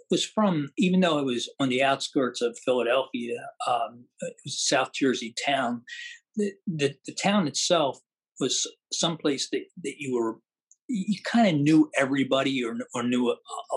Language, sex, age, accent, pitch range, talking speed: English, male, 50-69, American, 130-210 Hz, 165 wpm